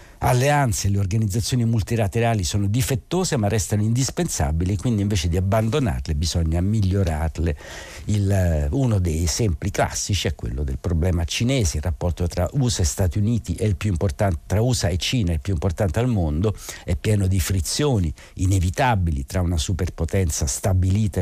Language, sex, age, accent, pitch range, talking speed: Italian, male, 60-79, native, 85-110 Hz, 155 wpm